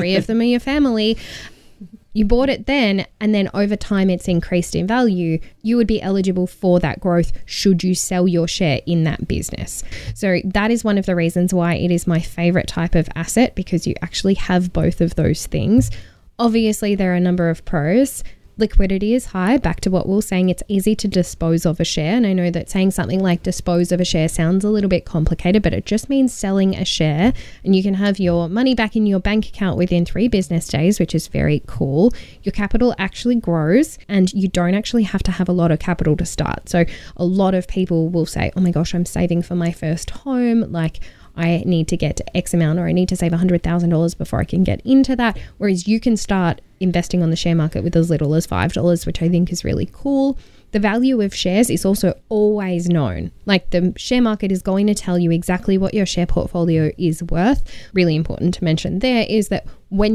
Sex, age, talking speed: female, 10-29, 220 wpm